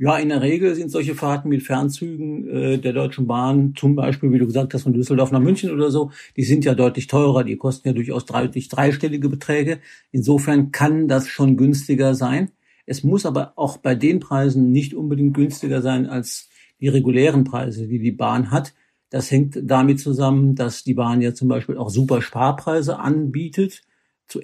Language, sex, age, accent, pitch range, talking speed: German, male, 50-69, German, 130-145 Hz, 185 wpm